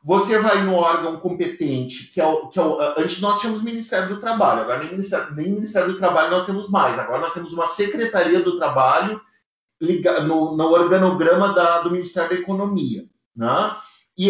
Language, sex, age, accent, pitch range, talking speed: Portuguese, male, 50-69, Brazilian, 150-205 Hz, 190 wpm